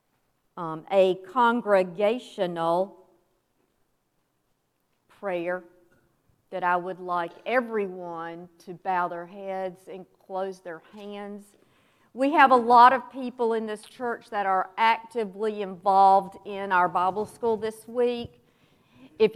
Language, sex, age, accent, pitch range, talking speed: English, female, 50-69, American, 180-215 Hz, 115 wpm